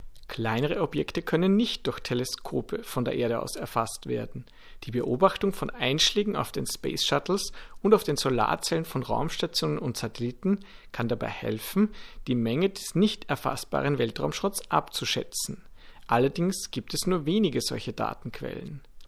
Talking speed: 140 wpm